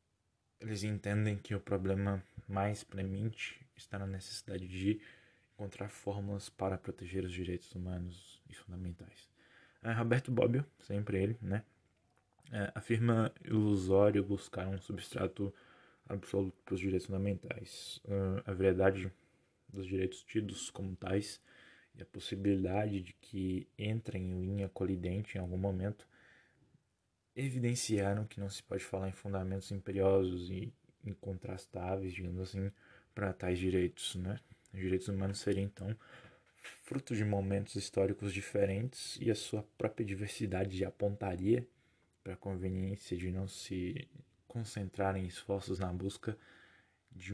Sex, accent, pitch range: male, Brazilian, 95-105 Hz